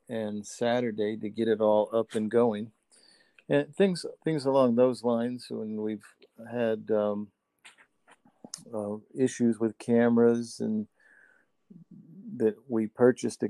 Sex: male